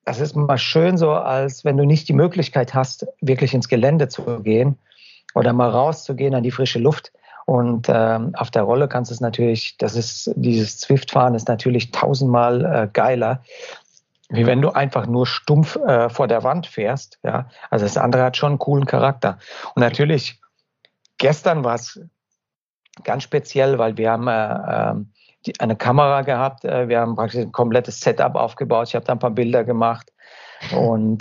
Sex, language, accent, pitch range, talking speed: male, German, German, 115-140 Hz, 180 wpm